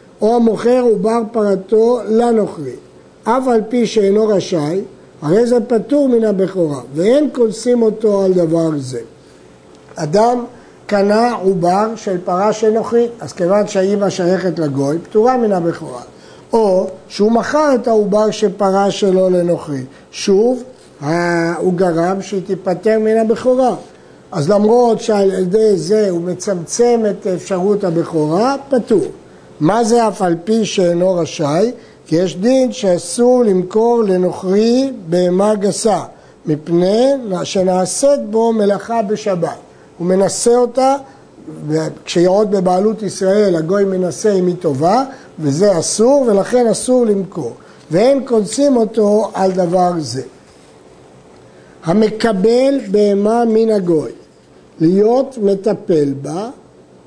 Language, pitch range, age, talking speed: Hebrew, 180-230 Hz, 50-69, 120 wpm